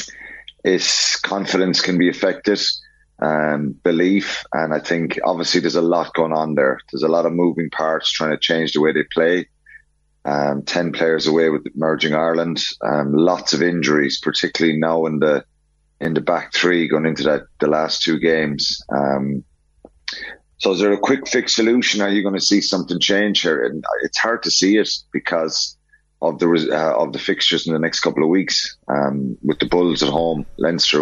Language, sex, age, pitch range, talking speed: English, male, 30-49, 75-90 Hz, 185 wpm